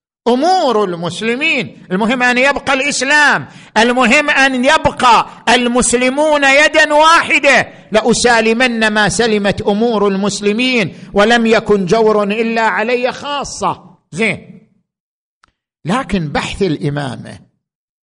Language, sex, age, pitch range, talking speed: Arabic, male, 50-69, 195-255 Hz, 90 wpm